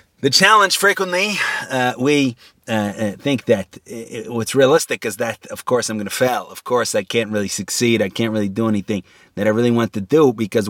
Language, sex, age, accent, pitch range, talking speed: English, male, 30-49, American, 105-125 Hz, 220 wpm